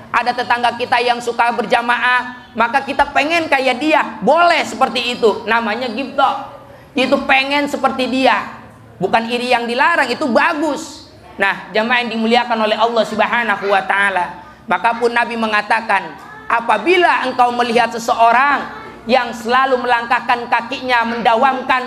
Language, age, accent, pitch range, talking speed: Indonesian, 30-49, native, 230-260 Hz, 125 wpm